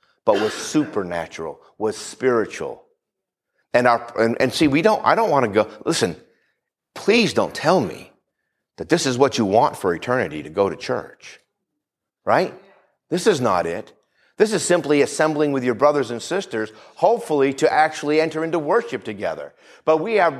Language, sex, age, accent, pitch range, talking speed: English, male, 50-69, American, 145-190 Hz, 170 wpm